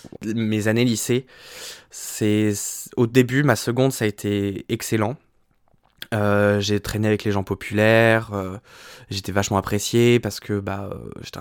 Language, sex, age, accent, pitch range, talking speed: French, male, 20-39, French, 100-120 Hz, 140 wpm